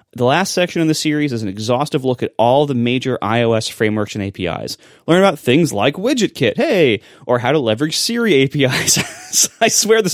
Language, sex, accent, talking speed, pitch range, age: English, male, American, 195 wpm, 110-155 Hz, 20-39